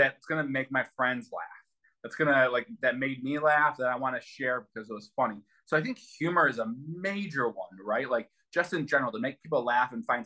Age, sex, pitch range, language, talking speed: 20-39, male, 115-150 Hz, English, 235 wpm